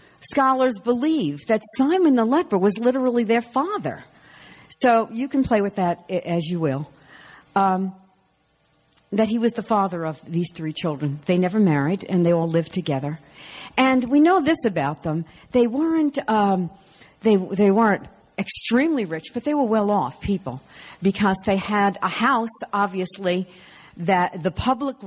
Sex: female